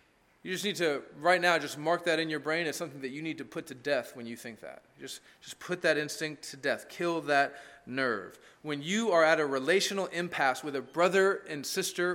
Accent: American